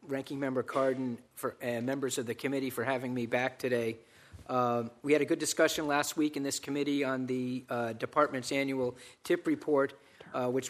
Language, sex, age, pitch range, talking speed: English, male, 50-69, 125-155 Hz, 185 wpm